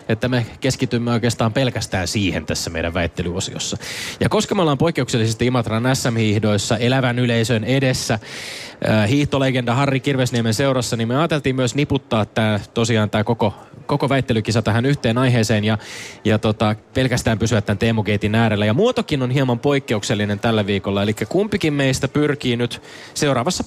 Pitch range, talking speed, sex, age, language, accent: 110-145 Hz, 145 wpm, male, 20-39, Finnish, native